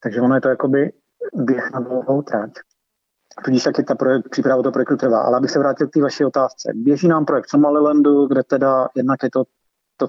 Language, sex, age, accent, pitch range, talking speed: Czech, male, 30-49, native, 115-130 Hz, 210 wpm